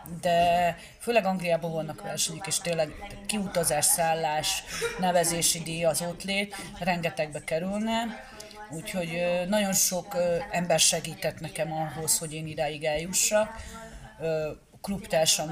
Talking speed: 105 wpm